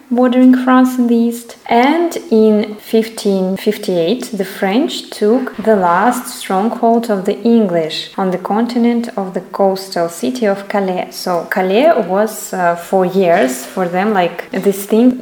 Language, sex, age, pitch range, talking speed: English, female, 20-39, 185-230 Hz, 145 wpm